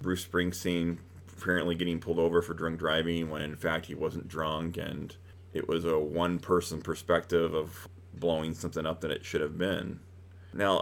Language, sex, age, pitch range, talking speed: English, male, 30-49, 85-90 Hz, 170 wpm